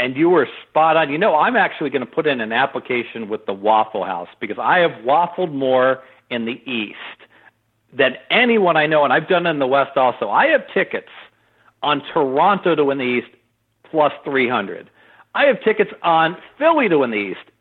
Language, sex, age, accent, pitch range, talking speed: English, male, 50-69, American, 125-175 Hz, 200 wpm